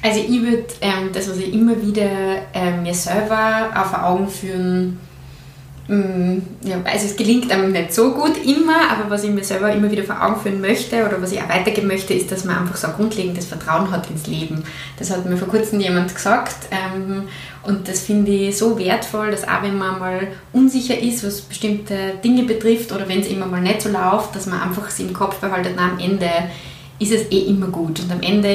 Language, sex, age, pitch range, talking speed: German, female, 20-39, 185-215 Hz, 220 wpm